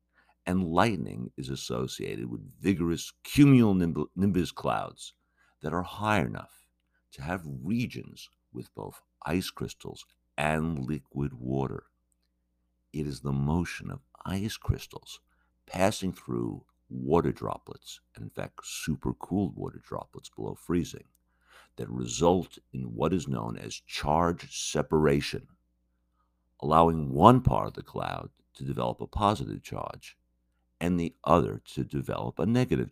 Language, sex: English, male